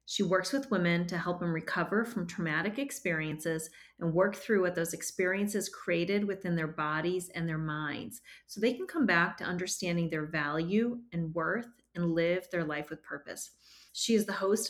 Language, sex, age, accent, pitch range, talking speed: English, female, 30-49, American, 170-205 Hz, 185 wpm